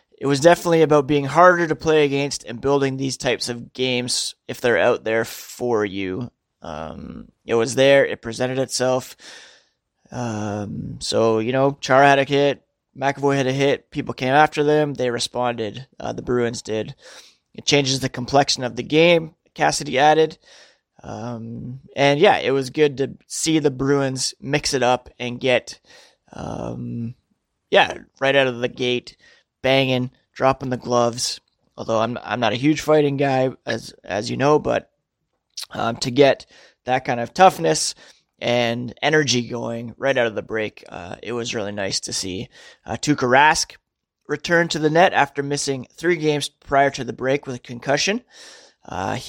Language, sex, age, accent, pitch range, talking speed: English, male, 20-39, American, 120-145 Hz, 170 wpm